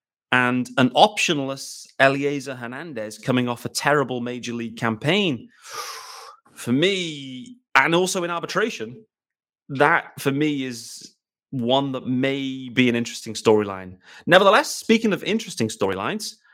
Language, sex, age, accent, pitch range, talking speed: English, male, 30-49, British, 125-180 Hz, 125 wpm